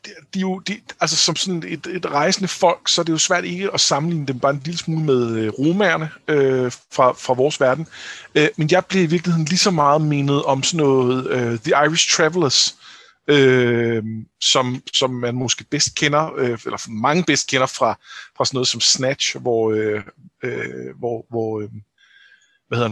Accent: native